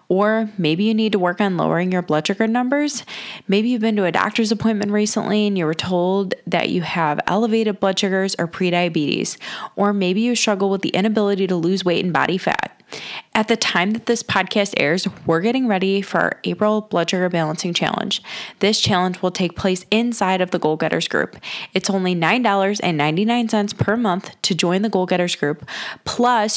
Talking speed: 190 wpm